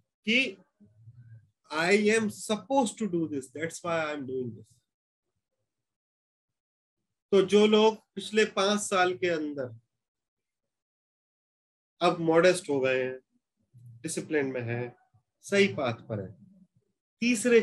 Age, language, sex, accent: 30-49, Hindi, male, native